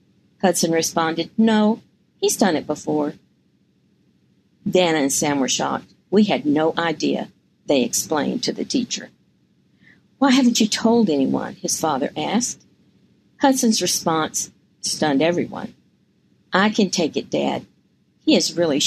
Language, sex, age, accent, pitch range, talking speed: English, female, 50-69, American, 160-220 Hz, 130 wpm